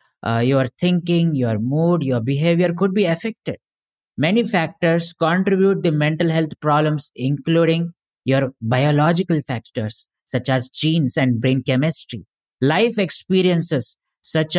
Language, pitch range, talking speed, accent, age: English, 140-175 Hz, 125 wpm, Indian, 20-39